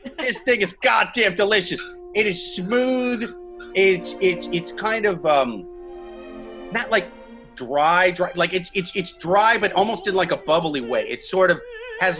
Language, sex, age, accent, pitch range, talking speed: English, male, 30-49, American, 175-270 Hz, 165 wpm